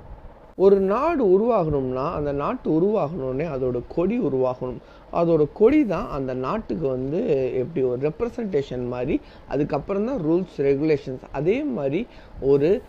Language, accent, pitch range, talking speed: Tamil, native, 135-190 Hz, 115 wpm